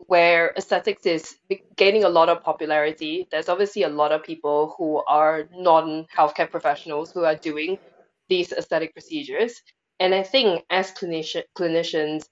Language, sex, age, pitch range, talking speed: English, female, 20-39, 155-190 Hz, 140 wpm